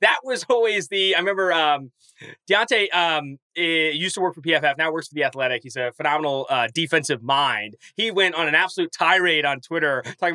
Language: English